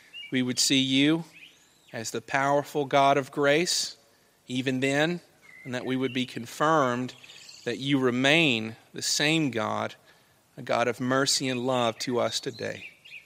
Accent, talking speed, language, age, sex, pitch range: American, 150 wpm, English, 40-59, male, 130-160 Hz